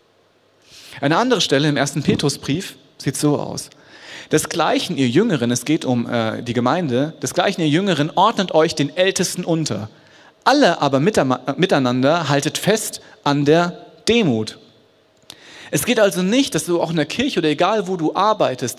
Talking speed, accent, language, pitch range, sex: 165 wpm, German, German, 135-190 Hz, male